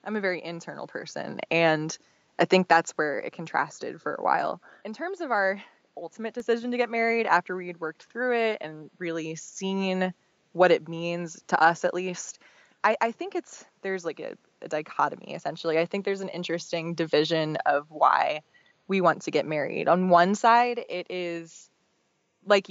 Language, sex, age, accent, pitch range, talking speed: English, female, 20-39, American, 165-210 Hz, 180 wpm